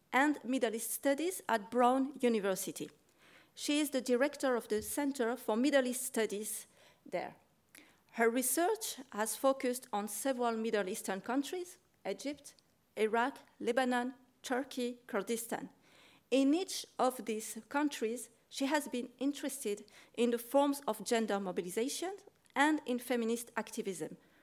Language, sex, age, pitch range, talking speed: French, female, 40-59, 210-265 Hz, 130 wpm